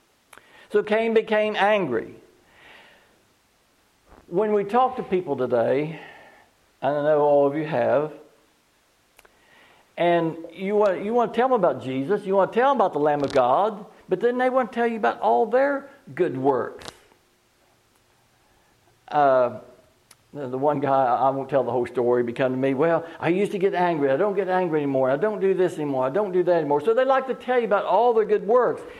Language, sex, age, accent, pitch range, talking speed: English, male, 60-79, American, 135-215 Hz, 190 wpm